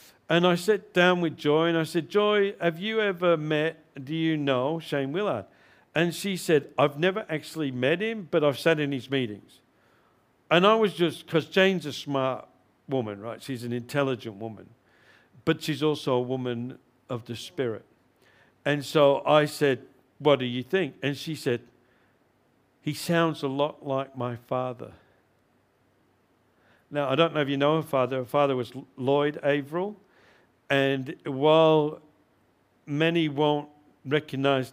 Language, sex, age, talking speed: English, male, 50-69, 160 wpm